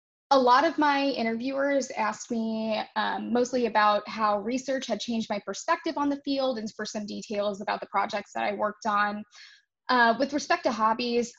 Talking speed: 185 wpm